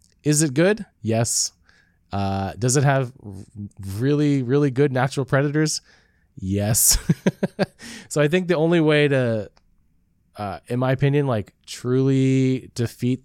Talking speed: 125 wpm